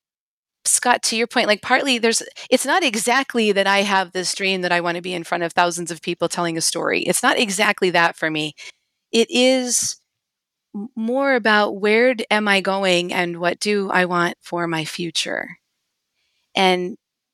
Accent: American